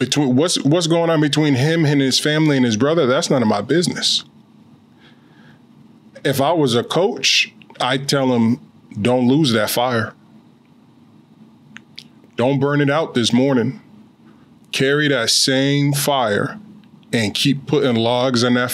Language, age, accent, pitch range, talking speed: English, 20-39, American, 120-135 Hz, 145 wpm